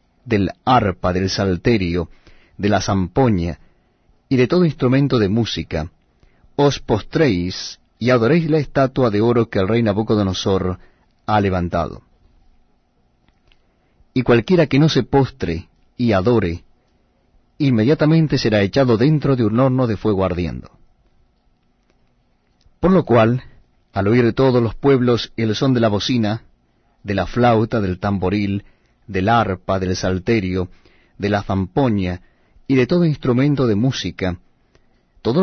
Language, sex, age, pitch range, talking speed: Spanish, male, 40-59, 95-130 Hz, 130 wpm